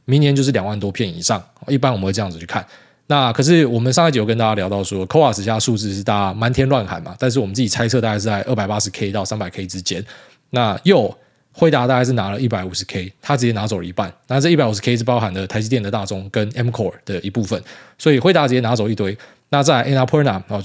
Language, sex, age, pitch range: Chinese, male, 20-39, 105-135 Hz